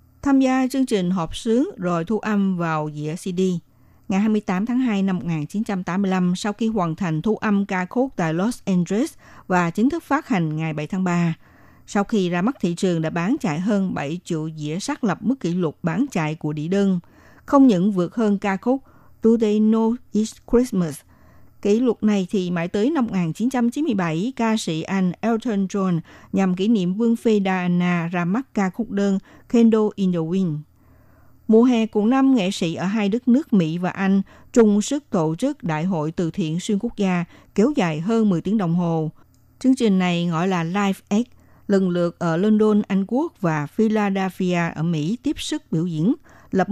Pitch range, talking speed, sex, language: 170-225 Hz, 195 wpm, female, Vietnamese